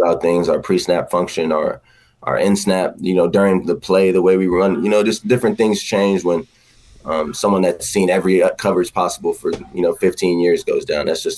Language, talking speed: English, 205 wpm